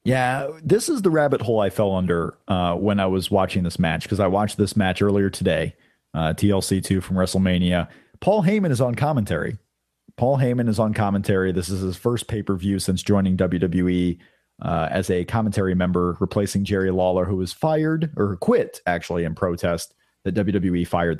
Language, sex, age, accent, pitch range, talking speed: English, male, 30-49, American, 95-125 Hz, 180 wpm